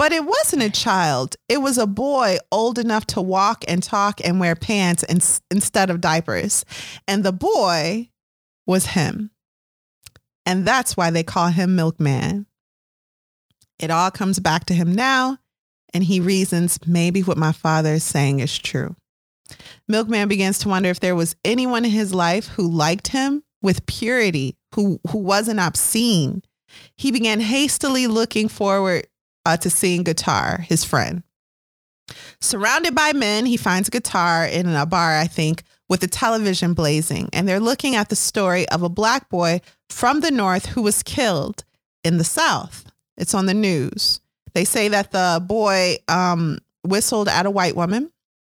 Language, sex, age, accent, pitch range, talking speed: English, female, 30-49, American, 170-215 Hz, 165 wpm